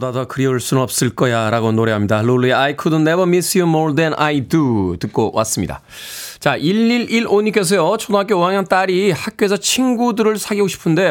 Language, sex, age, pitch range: Korean, male, 20-39, 120-200 Hz